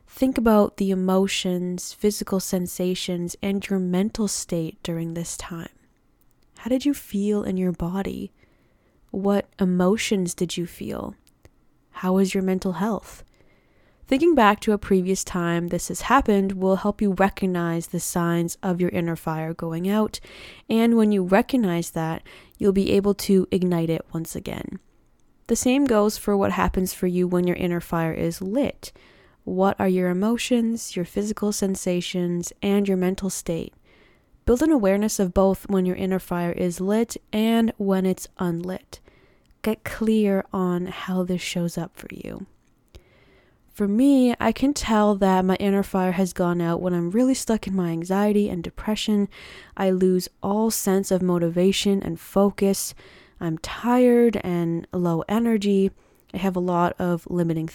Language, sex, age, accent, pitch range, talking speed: English, female, 20-39, American, 180-210 Hz, 160 wpm